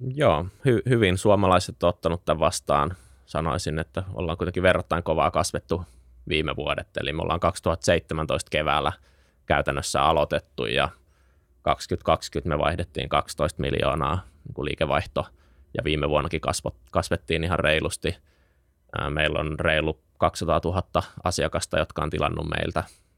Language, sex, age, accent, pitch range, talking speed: Finnish, male, 20-39, native, 75-90 Hz, 125 wpm